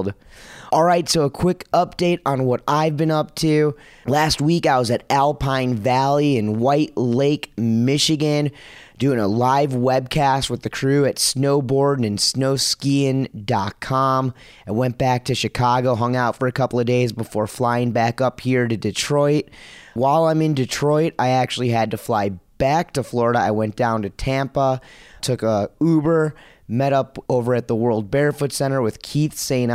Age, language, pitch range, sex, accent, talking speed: 30-49, English, 120-140 Hz, male, American, 170 wpm